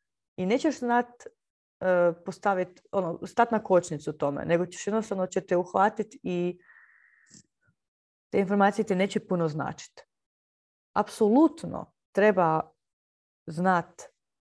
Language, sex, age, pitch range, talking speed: Croatian, female, 30-49, 170-230 Hz, 100 wpm